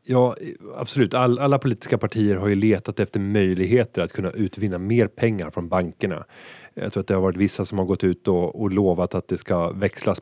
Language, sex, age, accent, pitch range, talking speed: Swedish, male, 30-49, native, 95-120 Hz, 210 wpm